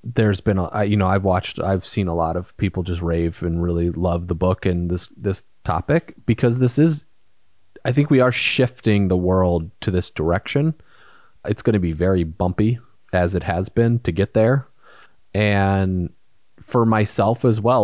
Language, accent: English, American